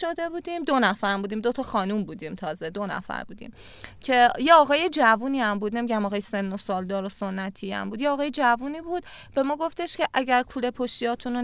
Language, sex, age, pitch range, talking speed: Persian, female, 30-49, 205-285 Hz, 210 wpm